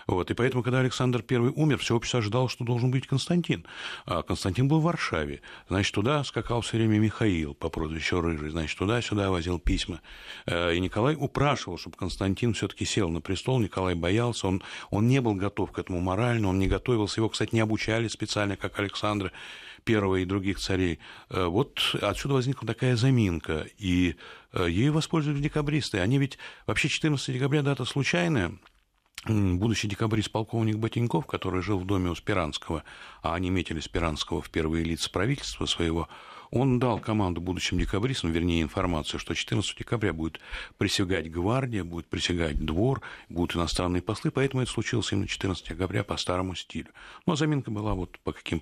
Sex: male